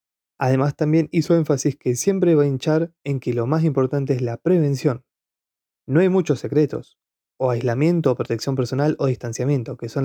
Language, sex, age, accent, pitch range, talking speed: Spanish, male, 20-39, Argentinian, 125-145 Hz, 180 wpm